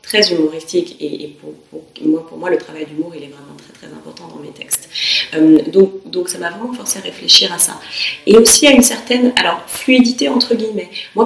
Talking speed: 220 wpm